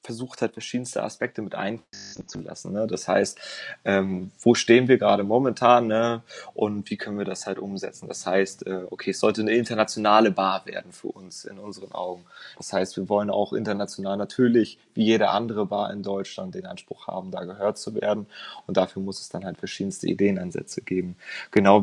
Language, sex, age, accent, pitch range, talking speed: German, male, 20-39, German, 100-115 Hz, 180 wpm